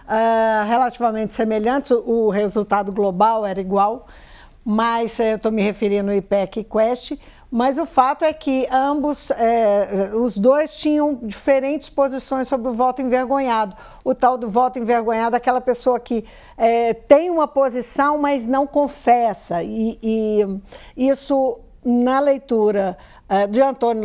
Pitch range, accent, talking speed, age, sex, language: 210-260 Hz, Brazilian, 130 wpm, 60-79, female, Portuguese